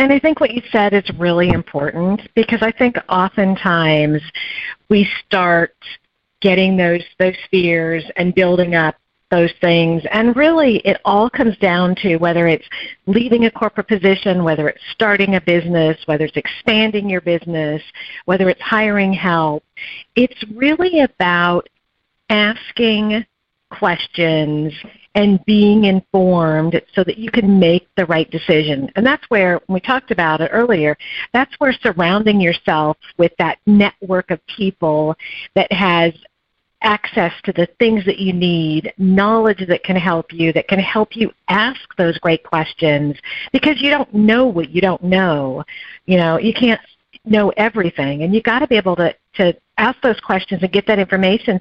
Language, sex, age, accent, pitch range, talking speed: English, female, 50-69, American, 170-220 Hz, 155 wpm